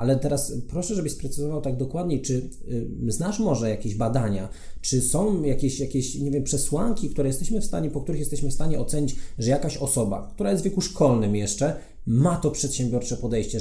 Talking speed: 190 wpm